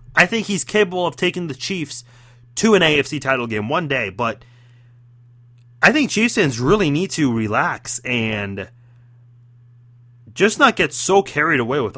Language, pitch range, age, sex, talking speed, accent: English, 120-190 Hz, 30-49, male, 160 wpm, American